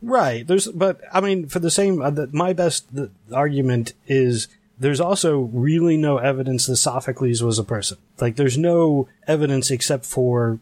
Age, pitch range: 30-49, 125-170 Hz